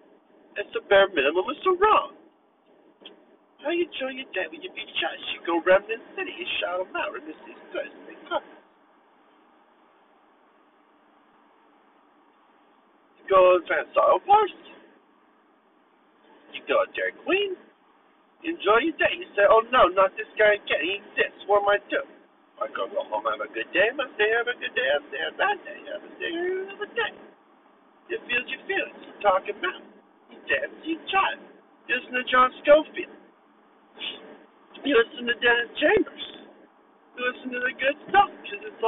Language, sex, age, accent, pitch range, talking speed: English, male, 50-69, American, 225-370 Hz, 195 wpm